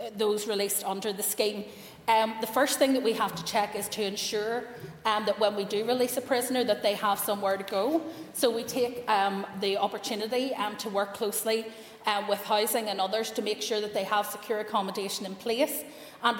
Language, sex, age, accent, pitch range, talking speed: English, female, 30-49, Irish, 200-230 Hz, 210 wpm